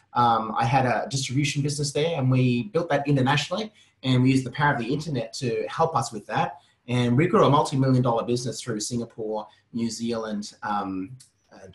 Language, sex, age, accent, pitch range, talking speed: English, male, 30-49, Australian, 120-145 Hz, 190 wpm